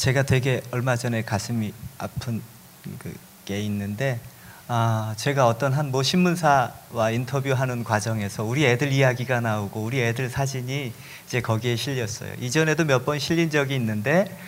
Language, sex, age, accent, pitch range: Korean, male, 40-59, native, 120-170 Hz